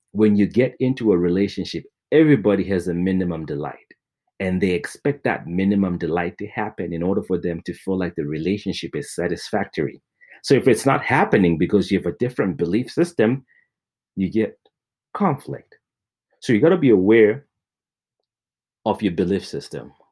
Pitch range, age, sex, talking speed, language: 90-115 Hz, 30-49, male, 160 wpm, English